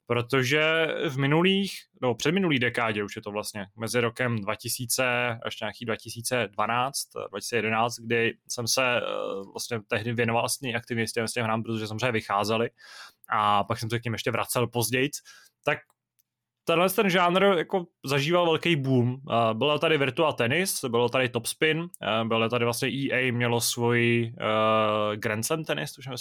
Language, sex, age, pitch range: Czech, male, 20-39, 115-130 Hz